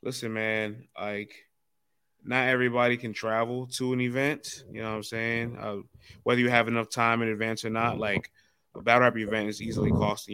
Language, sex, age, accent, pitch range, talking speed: English, male, 20-39, American, 105-115 Hz, 190 wpm